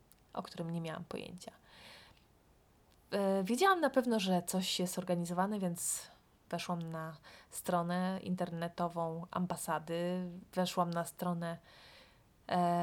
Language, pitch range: Polish, 175-220 Hz